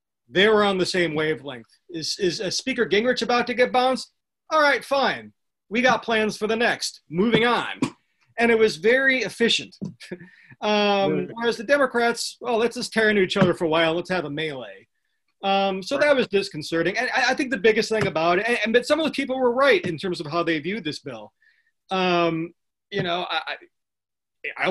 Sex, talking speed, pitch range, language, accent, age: male, 210 wpm, 165-230 Hz, English, American, 40-59